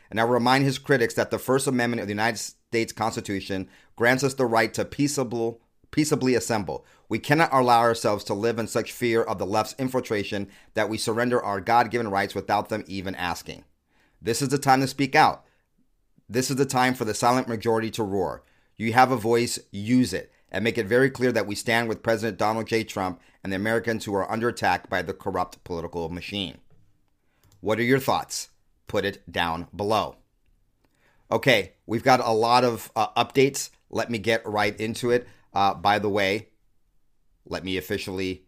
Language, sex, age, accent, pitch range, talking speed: English, male, 40-59, American, 100-120 Hz, 190 wpm